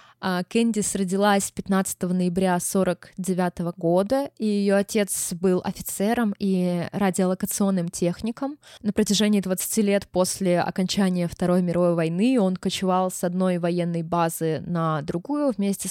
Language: Russian